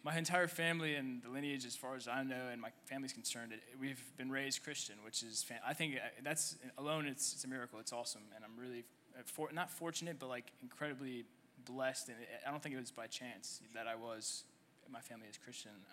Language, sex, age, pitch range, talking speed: English, male, 20-39, 120-150 Hz, 220 wpm